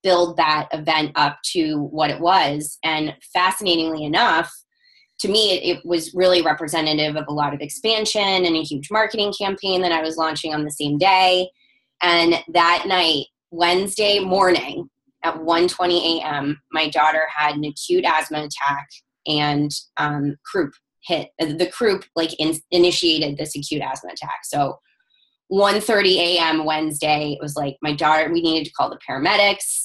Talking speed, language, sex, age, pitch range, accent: 155 wpm, English, female, 20-39, 155-200 Hz, American